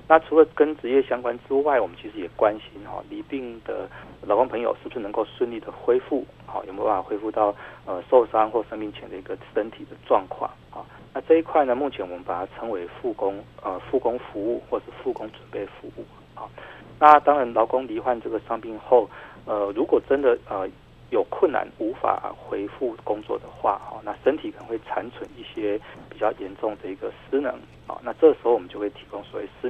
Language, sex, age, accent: Chinese, male, 40-59, native